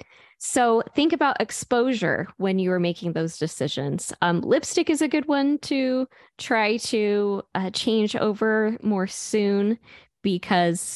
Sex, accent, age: female, American, 10-29